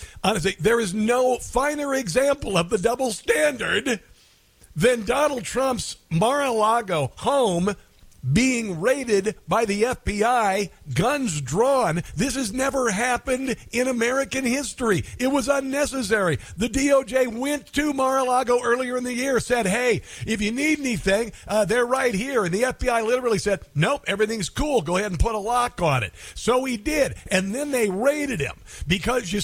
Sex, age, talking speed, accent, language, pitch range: male, 50-69, 160 wpm, American, English, 165-240 Hz